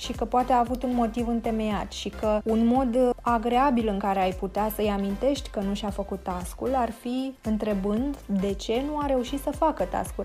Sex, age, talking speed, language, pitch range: female, 20-39, 205 wpm, Romanian, 215-255 Hz